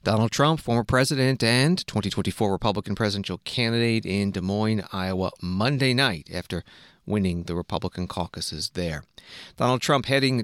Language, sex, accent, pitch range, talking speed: English, male, American, 95-120 Hz, 140 wpm